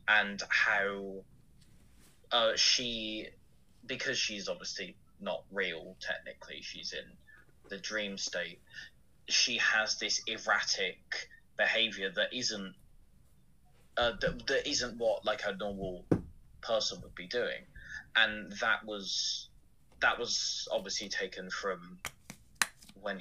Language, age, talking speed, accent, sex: English, 20-39, 110 wpm, British, male